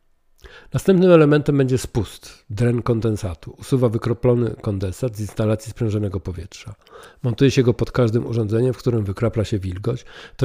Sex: male